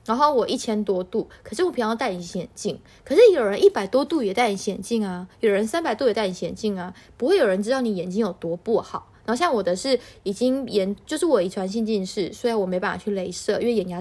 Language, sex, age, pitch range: Chinese, female, 20-39, 200-260 Hz